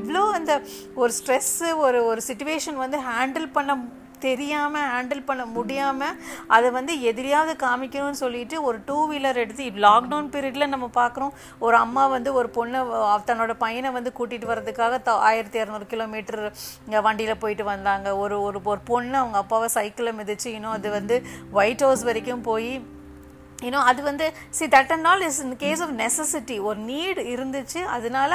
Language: Tamil